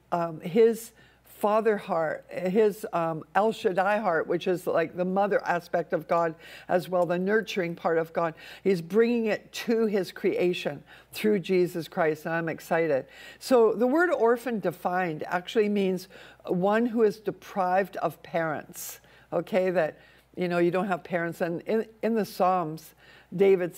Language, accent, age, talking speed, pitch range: English, American, 60-79, 160 wpm, 175-205 Hz